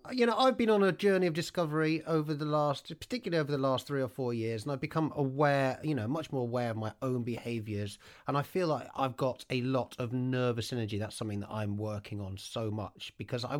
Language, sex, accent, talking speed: English, male, British, 240 wpm